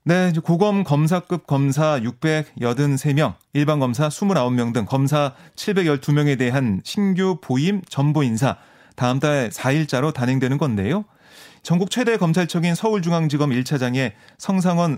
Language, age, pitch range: Korean, 30-49, 135-180 Hz